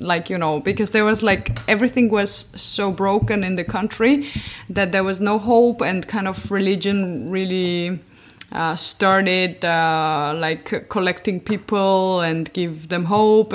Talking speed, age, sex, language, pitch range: 150 wpm, 20-39, female, French, 170-210 Hz